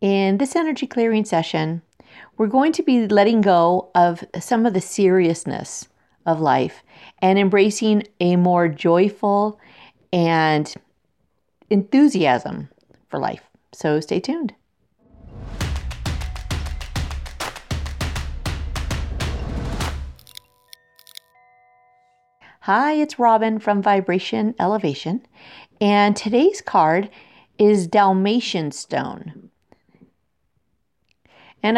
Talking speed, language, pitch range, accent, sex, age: 80 wpm, English, 165-225 Hz, American, female, 40-59